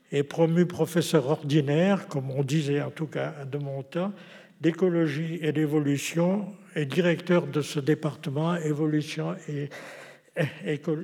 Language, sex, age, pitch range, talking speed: French, male, 60-79, 150-185 Hz, 135 wpm